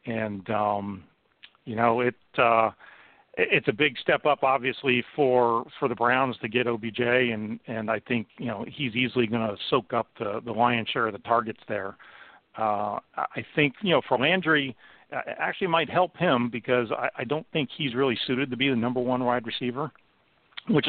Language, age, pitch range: English, 50-69, 115-135 Hz